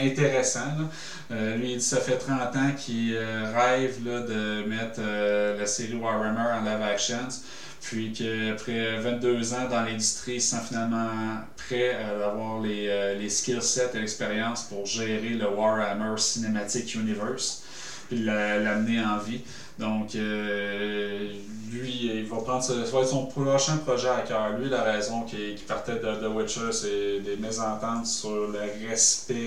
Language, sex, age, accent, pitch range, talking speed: French, male, 30-49, Canadian, 110-130 Hz, 165 wpm